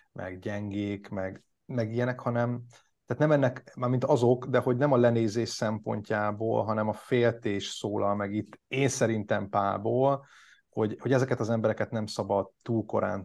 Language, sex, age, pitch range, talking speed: Hungarian, male, 30-49, 105-125 Hz, 165 wpm